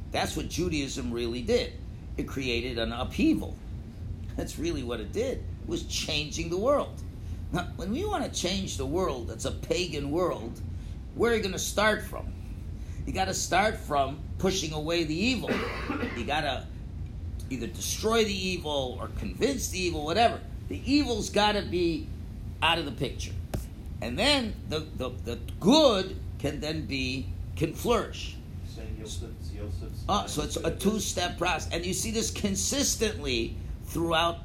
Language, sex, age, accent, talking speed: English, male, 50-69, American, 150 wpm